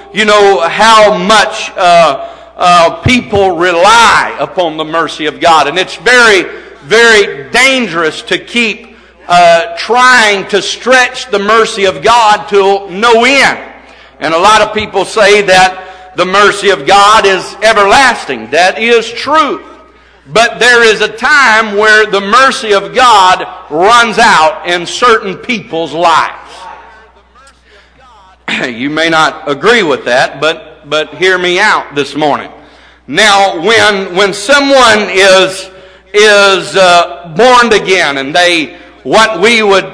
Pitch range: 185-230 Hz